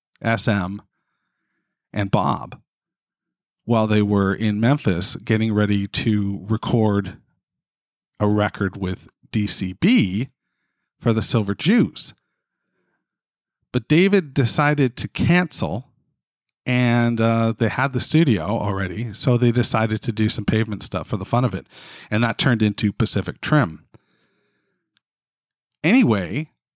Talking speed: 115 wpm